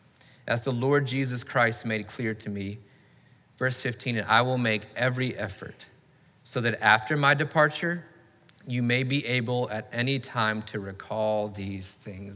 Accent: American